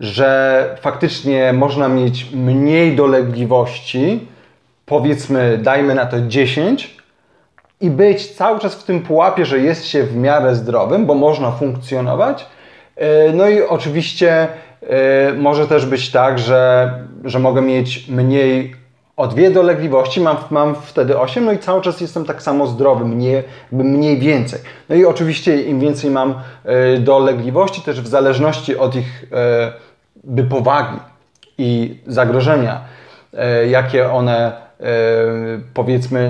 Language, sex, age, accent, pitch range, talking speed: Polish, male, 30-49, native, 125-150 Hz, 125 wpm